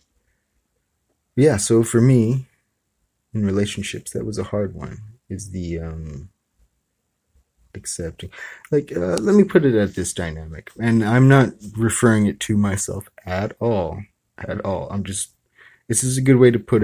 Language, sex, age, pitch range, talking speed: English, male, 30-49, 90-110 Hz, 155 wpm